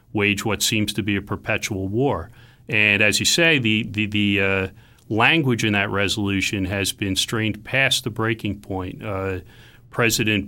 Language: English